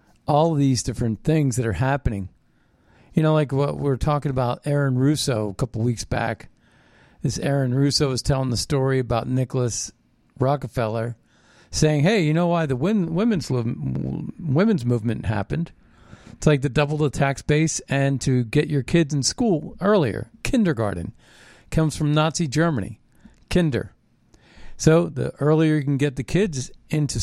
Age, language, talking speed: 50-69, English, 160 wpm